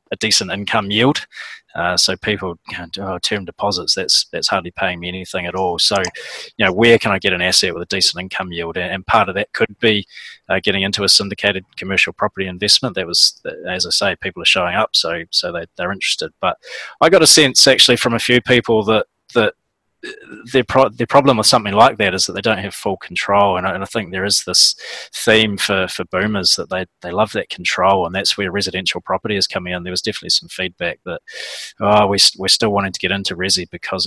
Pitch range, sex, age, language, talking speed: 90-110 Hz, male, 20-39, English, 225 wpm